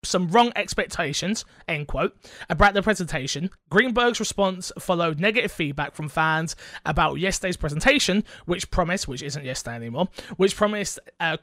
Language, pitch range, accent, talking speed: English, 155-205 Hz, British, 140 wpm